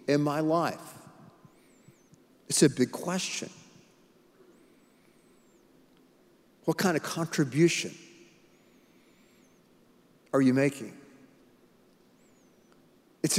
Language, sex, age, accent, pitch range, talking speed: English, male, 50-69, American, 160-210 Hz, 65 wpm